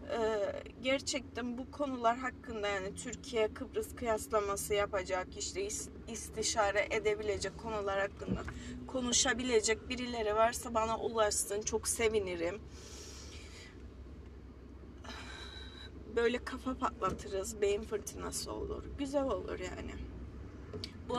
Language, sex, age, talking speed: Turkish, female, 30-49, 90 wpm